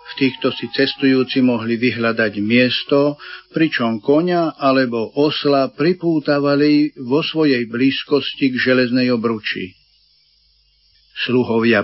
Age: 50-69